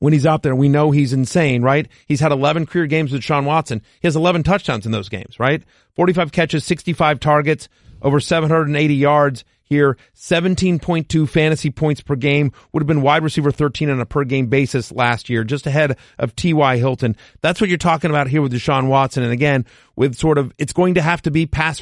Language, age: English, 40-59